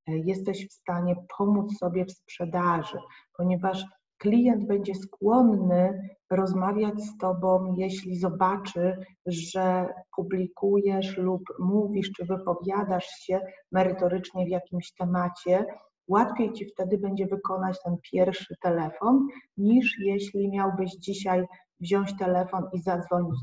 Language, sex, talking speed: Polish, female, 110 wpm